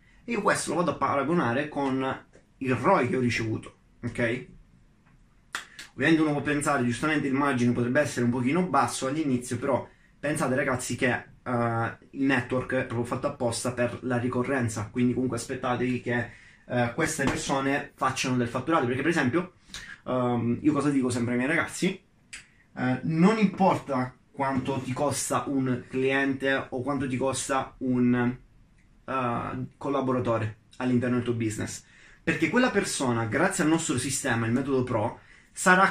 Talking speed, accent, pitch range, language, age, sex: 145 wpm, native, 120-145 Hz, Italian, 20-39, male